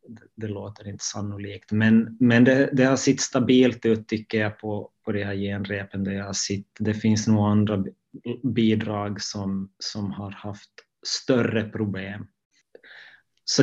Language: Swedish